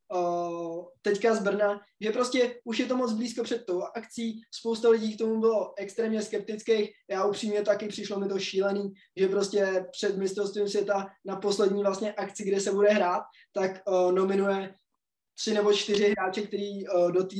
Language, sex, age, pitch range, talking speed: Czech, male, 20-39, 195-230 Hz, 175 wpm